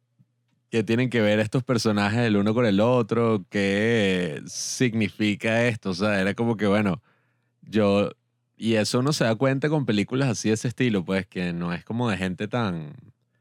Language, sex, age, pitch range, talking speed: Spanish, male, 30-49, 100-120 Hz, 185 wpm